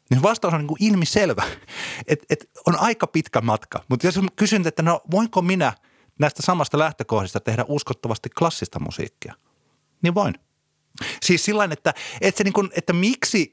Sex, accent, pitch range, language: male, native, 110-155 Hz, Finnish